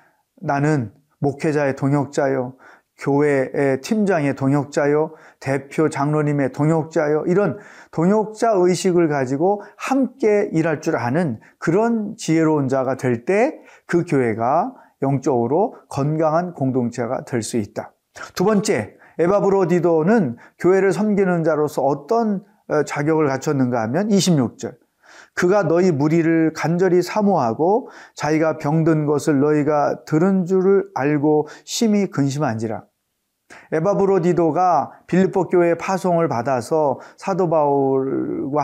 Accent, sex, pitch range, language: native, male, 140-190 Hz, Korean